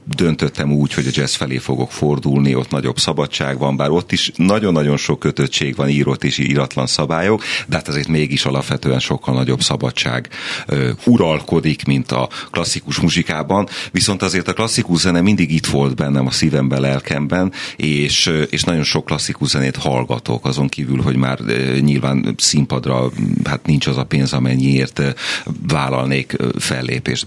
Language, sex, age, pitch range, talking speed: Hungarian, male, 40-59, 70-85 Hz, 150 wpm